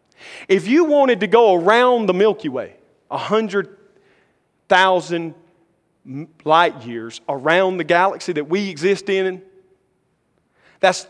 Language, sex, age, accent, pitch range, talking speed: English, male, 40-59, American, 150-215 Hz, 110 wpm